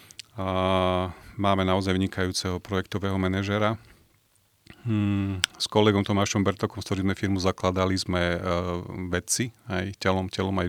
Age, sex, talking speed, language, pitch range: 30-49, male, 125 wpm, Slovak, 90-105 Hz